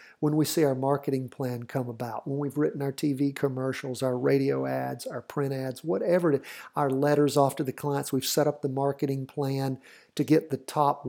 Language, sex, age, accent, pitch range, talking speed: English, male, 50-69, American, 135-150 Hz, 210 wpm